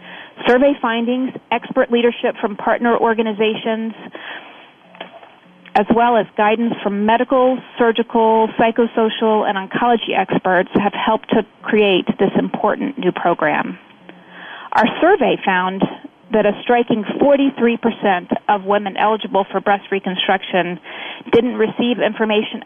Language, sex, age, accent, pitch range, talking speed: English, female, 30-49, American, 195-230 Hz, 110 wpm